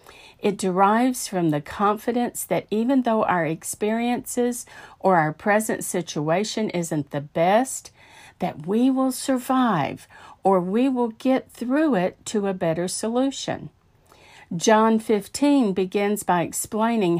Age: 50-69